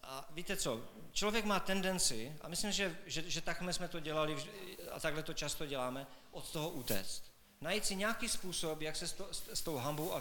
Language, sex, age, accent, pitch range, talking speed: Czech, male, 40-59, native, 140-180 Hz, 200 wpm